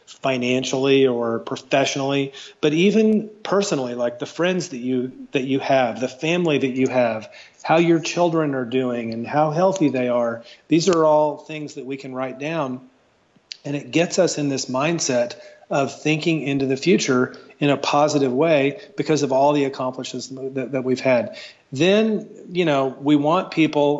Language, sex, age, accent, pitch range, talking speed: English, male, 40-59, American, 130-155 Hz, 175 wpm